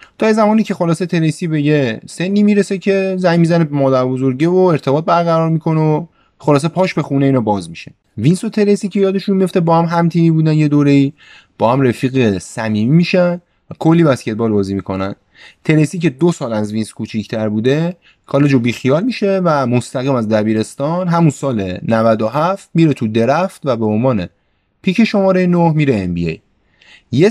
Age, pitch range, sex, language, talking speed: 30-49, 110-170 Hz, male, Persian, 180 wpm